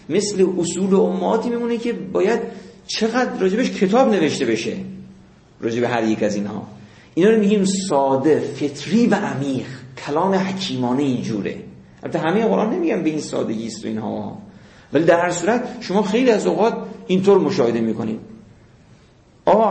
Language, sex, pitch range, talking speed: Persian, male, 125-200 Hz, 145 wpm